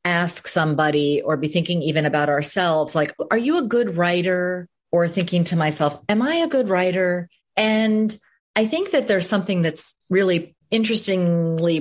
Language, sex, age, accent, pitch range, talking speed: English, female, 30-49, American, 155-205 Hz, 165 wpm